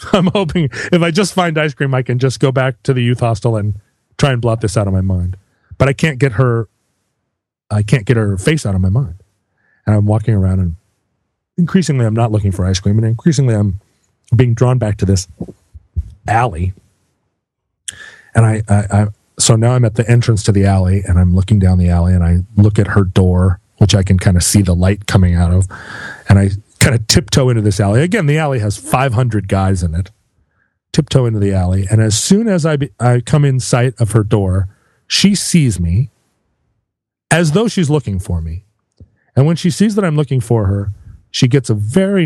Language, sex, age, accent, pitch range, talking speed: English, male, 30-49, American, 100-135 Hz, 215 wpm